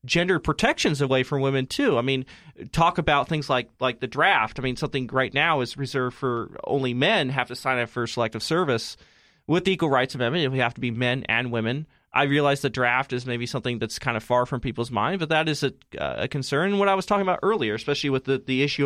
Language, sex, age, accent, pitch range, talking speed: English, male, 30-49, American, 125-150 Hz, 240 wpm